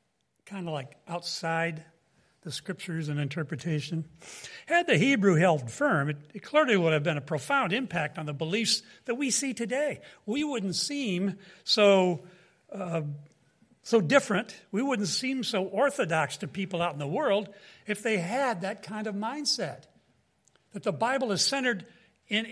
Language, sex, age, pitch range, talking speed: English, male, 60-79, 160-220 Hz, 160 wpm